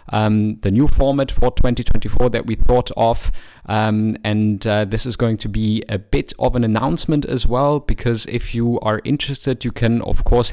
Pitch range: 105-125 Hz